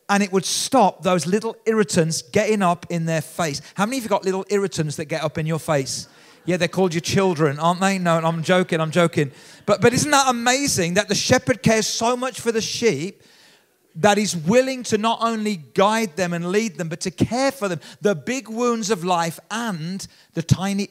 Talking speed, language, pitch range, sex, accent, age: 215 wpm, English, 160-205 Hz, male, British, 40-59